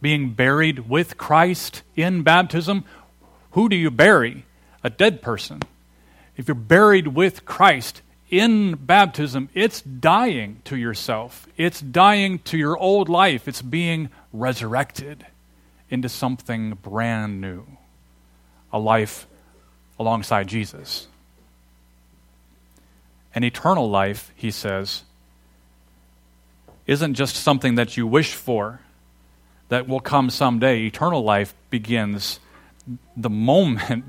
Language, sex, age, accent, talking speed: English, male, 40-59, American, 110 wpm